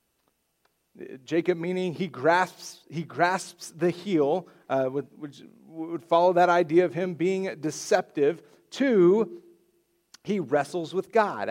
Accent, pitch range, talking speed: American, 150-200 Hz, 120 wpm